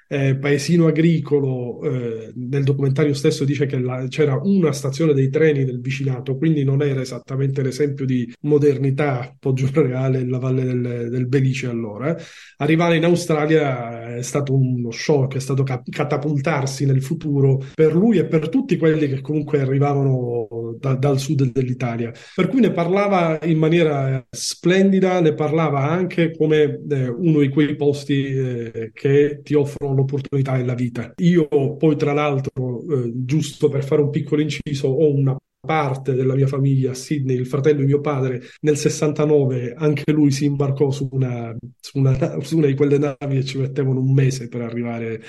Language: Italian